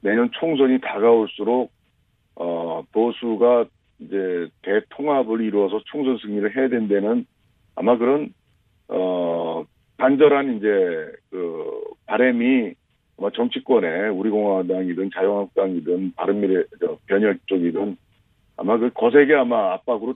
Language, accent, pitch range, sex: Korean, native, 100-135 Hz, male